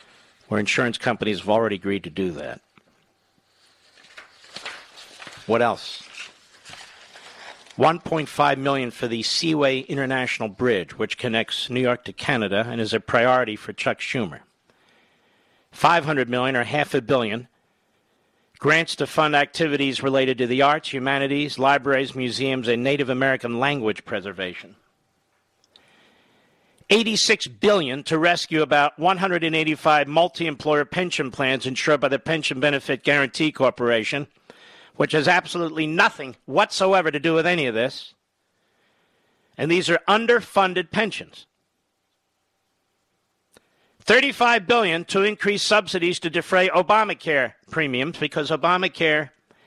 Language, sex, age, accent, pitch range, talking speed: English, male, 50-69, American, 130-175 Hz, 115 wpm